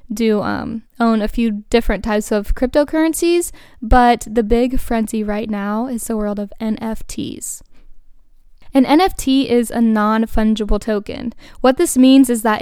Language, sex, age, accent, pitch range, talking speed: English, female, 10-29, American, 215-265 Hz, 145 wpm